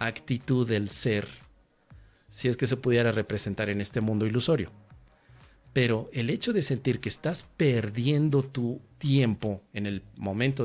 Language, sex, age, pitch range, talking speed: Spanish, male, 40-59, 115-145 Hz, 145 wpm